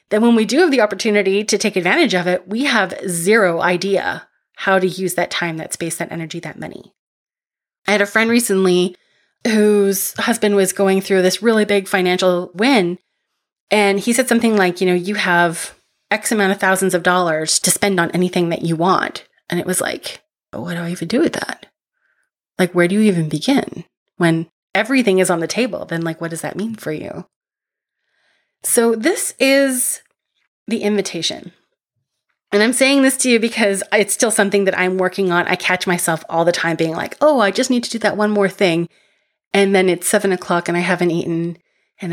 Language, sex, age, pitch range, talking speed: English, female, 30-49, 175-225 Hz, 200 wpm